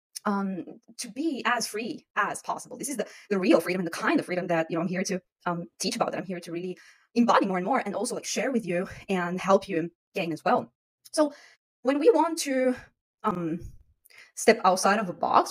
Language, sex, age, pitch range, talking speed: English, female, 20-39, 185-260 Hz, 230 wpm